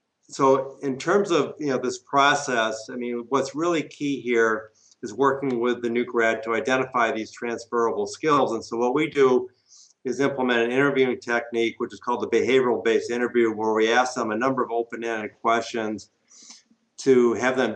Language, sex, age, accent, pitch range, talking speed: English, male, 50-69, American, 115-135 Hz, 185 wpm